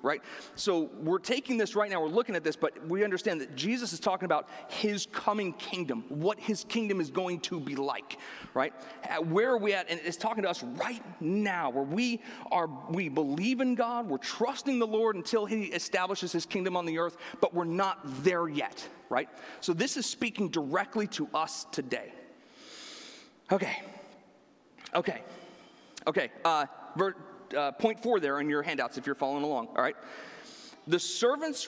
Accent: American